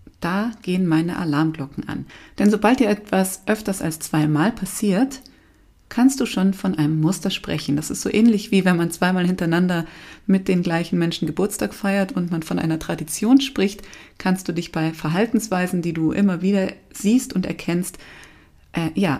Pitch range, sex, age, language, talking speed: 160-210 Hz, female, 30-49, German, 170 wpm